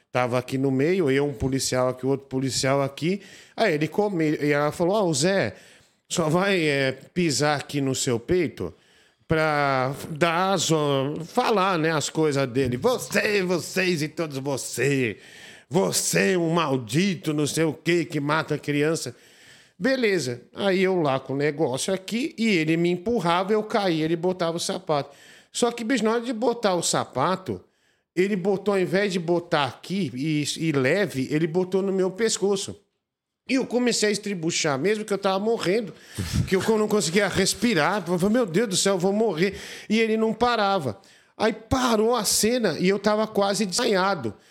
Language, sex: Portuguese, male